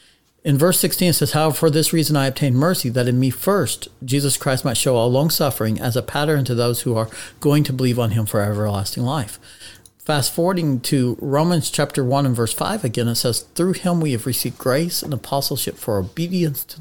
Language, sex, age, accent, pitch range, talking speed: English, male, 50-69, American, 115-150 Hz, 220 wpm